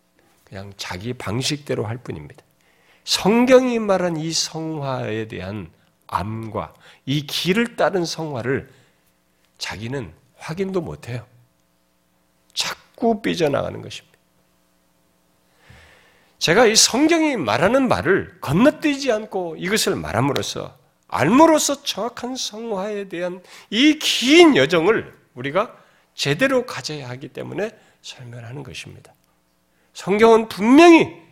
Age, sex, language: 40-59, male, Korean